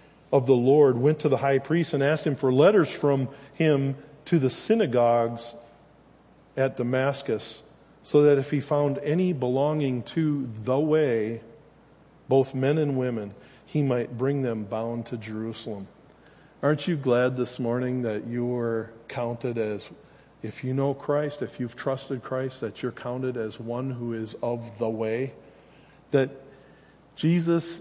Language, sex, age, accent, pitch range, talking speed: English, male, 40-59, American, 120-150 Hz, 155 wpm